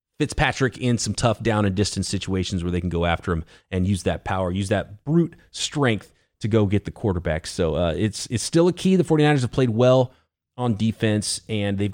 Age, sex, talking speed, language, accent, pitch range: 30-49, male, 215 wpm, English, American, 100-140 Hz